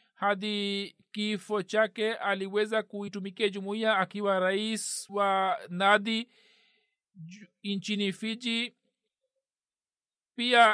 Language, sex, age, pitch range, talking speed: Swahili, male, 50-69, 195-220 Hz, 80 wpm